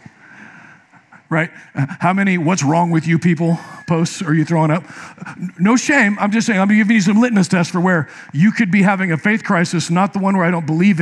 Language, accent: English, American